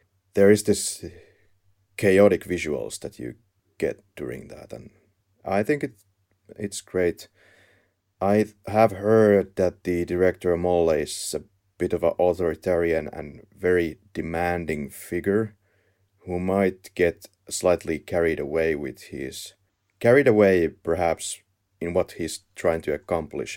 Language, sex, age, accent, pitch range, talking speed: English, male, 30-49, Finnish, 90-100 Hz, 125 wpm